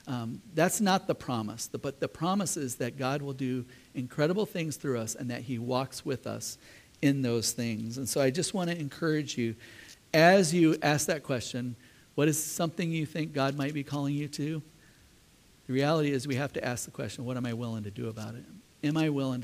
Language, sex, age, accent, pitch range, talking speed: English, male, 40-59, American, 115-150 Hz, 215 wpm